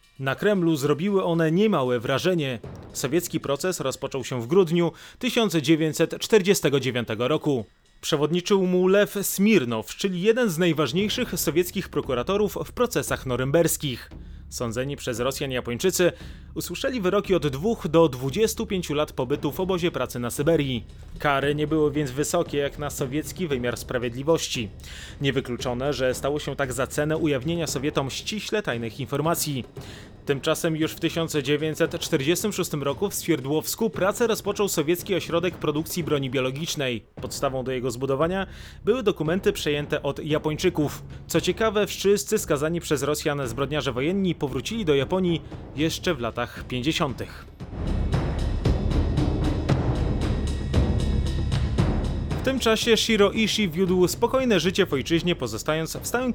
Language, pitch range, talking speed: Polish, 135-180 Hz, 125 wpm